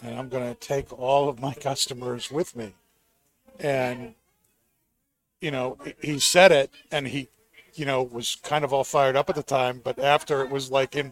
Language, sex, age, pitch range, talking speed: English, male, 40-59, 130-155 Hz, 195 wpm